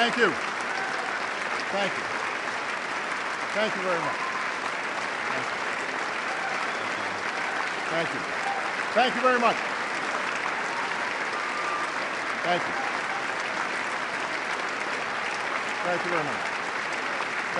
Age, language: 50-69, English